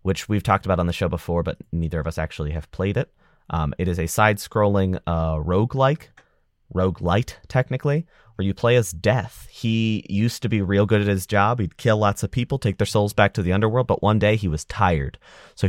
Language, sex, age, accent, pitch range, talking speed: English, male, 30-49, American, 85-110 Hz, 220 wpm